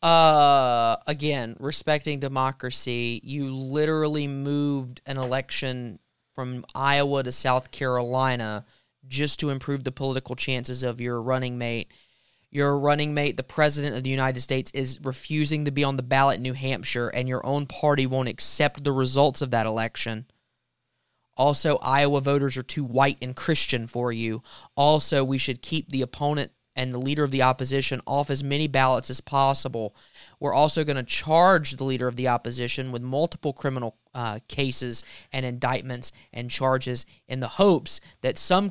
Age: 20-39